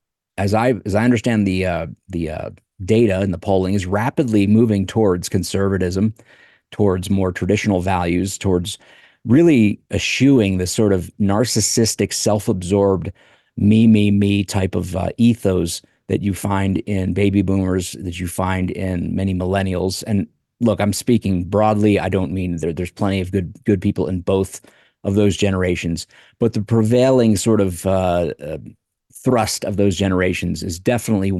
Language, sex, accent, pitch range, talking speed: English, male, American, 95-105 Hz, 155 wpm